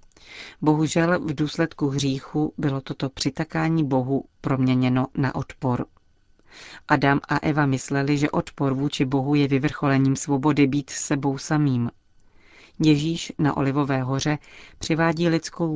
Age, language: 40-59, Czech